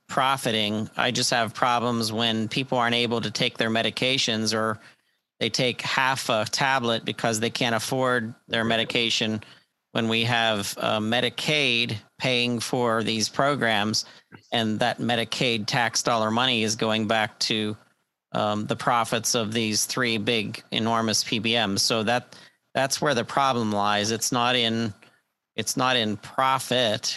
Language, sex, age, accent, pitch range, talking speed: English, male, 40-59, American, 110-125 Hz, 150 wpm